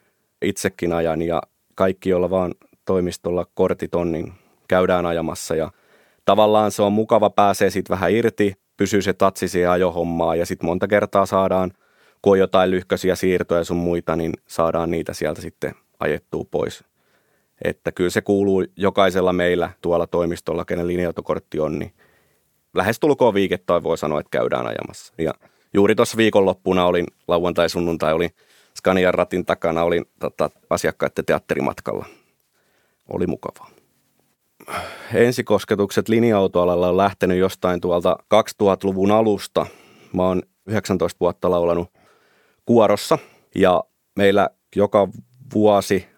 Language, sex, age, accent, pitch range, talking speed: Finnish, male, 30-49, native, 90-100 Hz, 130 wpm